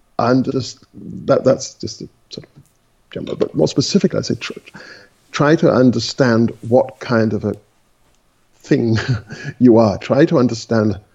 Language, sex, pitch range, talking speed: English, male, 120-170 Hz, 145 wpm